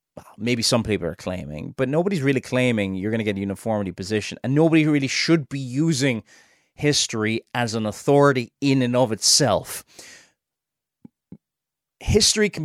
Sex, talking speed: male, 150 wpm